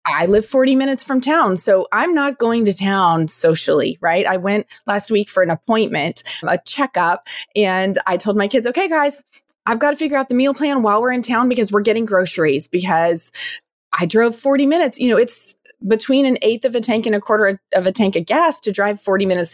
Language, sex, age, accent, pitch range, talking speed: English, female, 20-39, American, 180-245 Hz, 220 wpm